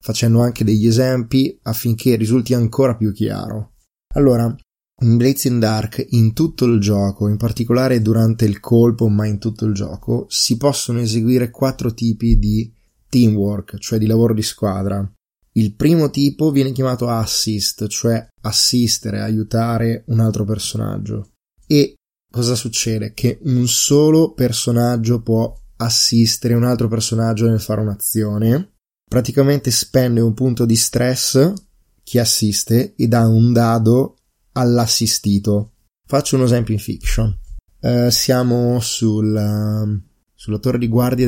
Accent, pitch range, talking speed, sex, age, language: native, 110-125 Hz, 130 wpm, male, 20-39, Italian